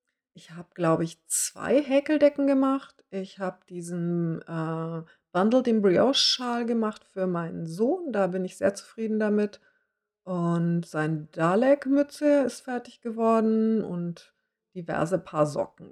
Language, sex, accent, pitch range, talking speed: English, female, German, 180-235 Hz, 130 wpm